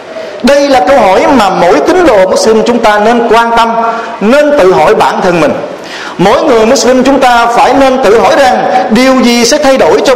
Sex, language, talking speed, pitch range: male, Vietnamese, 215 wpm, 220-275 Hz